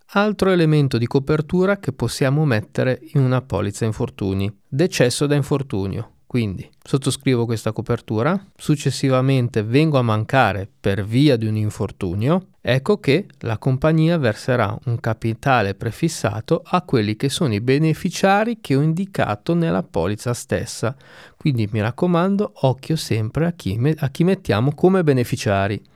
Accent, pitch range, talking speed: native, 110-160 Hz, 135 wpm